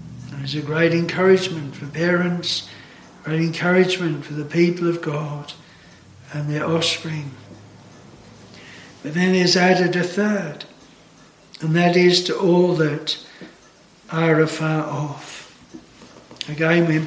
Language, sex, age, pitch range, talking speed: English, male, 60-79, 155-180 Hz, 115 wpm